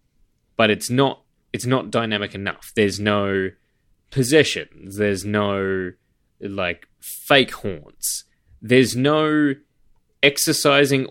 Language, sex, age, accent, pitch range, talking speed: English, male, 20-39, Australian, 105-145 Hz, 95 wpm